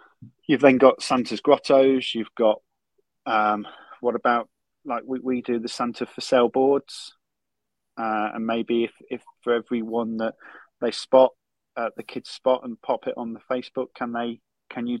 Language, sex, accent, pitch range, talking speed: English, male, British, 105-125 Hz, 170 wpm